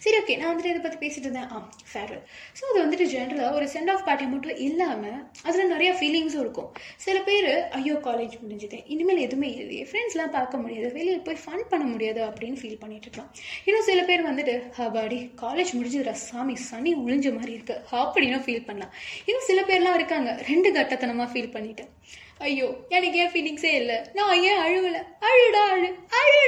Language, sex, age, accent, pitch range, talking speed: Tamil, female, 20-39, native, 245-360 Hz, 165 wpm